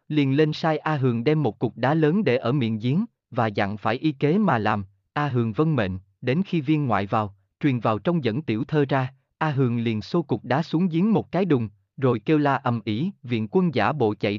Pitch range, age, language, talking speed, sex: 110-150 Hz, 20-39, Vietnamese, 240 wpm, male